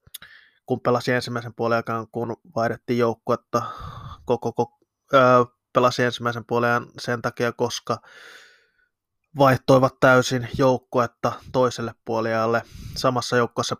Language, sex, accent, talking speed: Finnish, male, native, 100 wpm